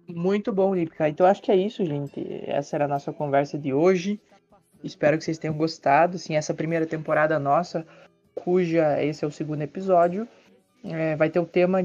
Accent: Brazilian